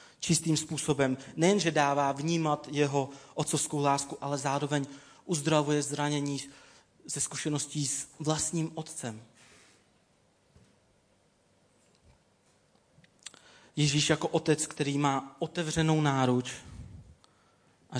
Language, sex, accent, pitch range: Czech, male, native, 135-155 Hz